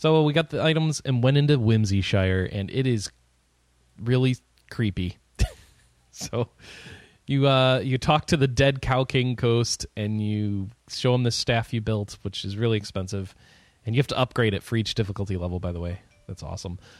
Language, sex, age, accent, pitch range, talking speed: English, male, 20-39, American, 110-145 Hz, 185 wpm